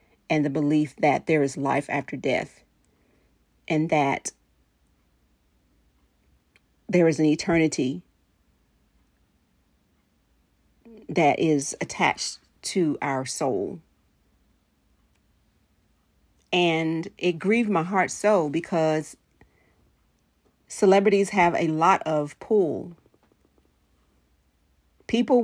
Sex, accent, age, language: female, American, 40-59, English